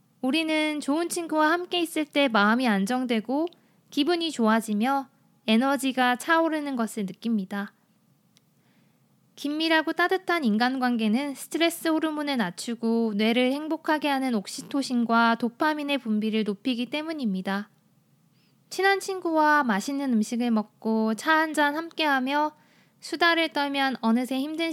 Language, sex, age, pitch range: Korean, female, 20-39, 225-295 Hz